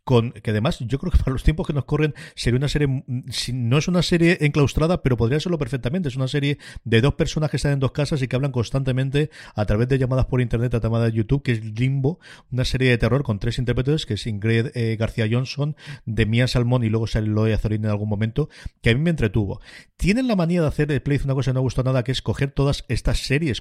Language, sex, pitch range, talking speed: Spanish, male, 115-150 Hz, 255 wpm